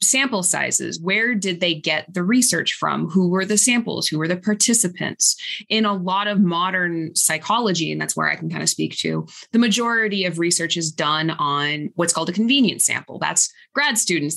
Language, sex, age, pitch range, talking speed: English, female, 20-39, 165-215 Hz, 195 wpm